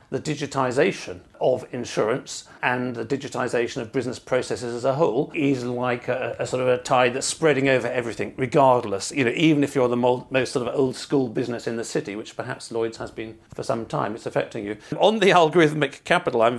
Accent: British